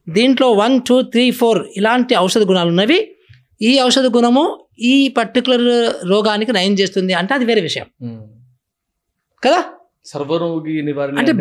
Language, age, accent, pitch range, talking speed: Telugu, 20-39, native, 175-250 Hz, 120 wpm